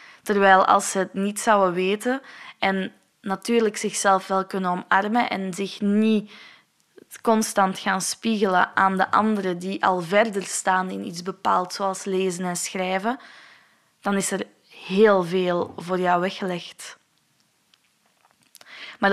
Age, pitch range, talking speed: 20-39, 185-210 Hz, 130 wpm